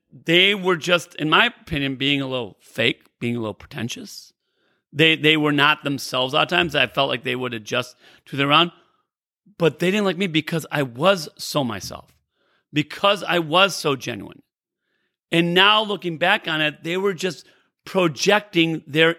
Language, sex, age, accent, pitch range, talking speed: English, male, 40-59, American, 150-210 Hz, 180 wpm